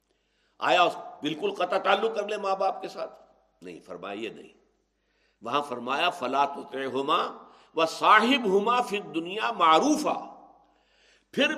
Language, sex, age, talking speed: Urdu, male, 60-79, 125 wpm